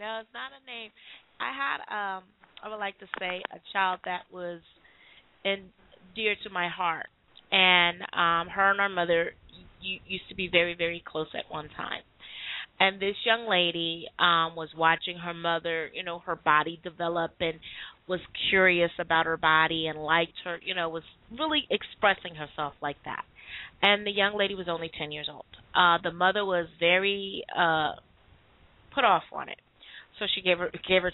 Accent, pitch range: American, 165-185 Hz